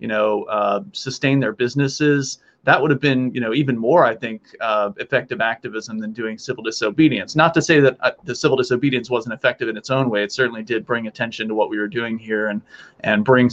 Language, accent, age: English, American, 30-49